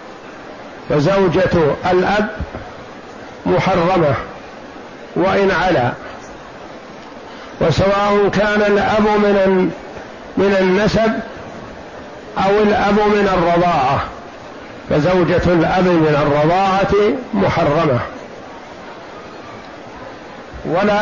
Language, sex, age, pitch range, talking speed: Arabic, male, 50-69, 175-200 Hz, 55 wpm